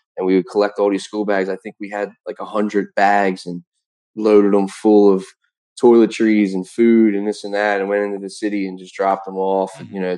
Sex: male